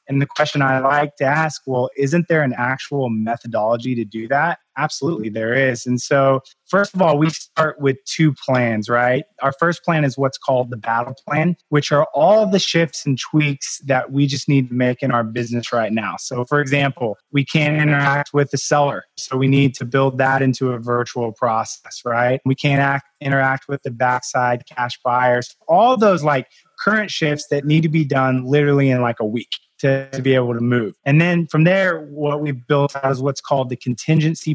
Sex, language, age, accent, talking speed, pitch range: male, English, 20-39, American, 210 wpm, 125-150 Hz